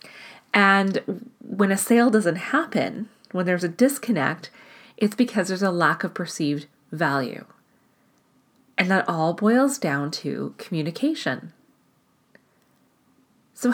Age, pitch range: 30-49, 175-235 Hz